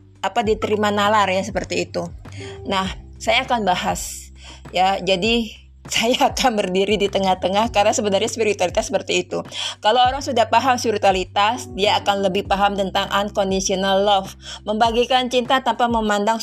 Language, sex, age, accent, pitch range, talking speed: Indonesian, female, 20-39, native, 185-235 Hz, 140 wpm